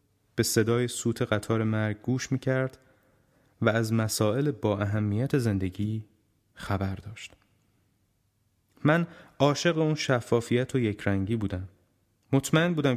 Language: Persian